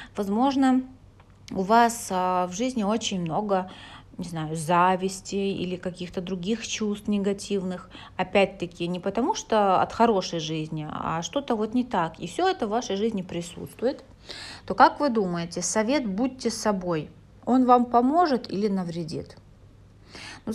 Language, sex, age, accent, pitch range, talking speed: Russian, female, 30-49, native, 180-230 Hz, 135 wpm